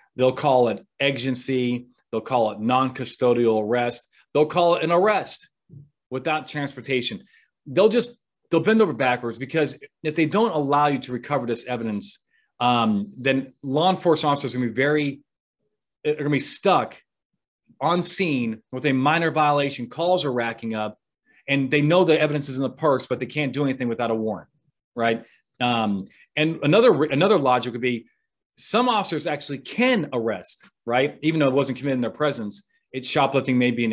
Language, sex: English, male